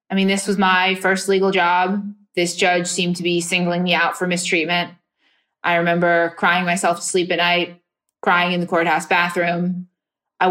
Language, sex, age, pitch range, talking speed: English, female, 20-39, 170-190 Hz, 185 wpm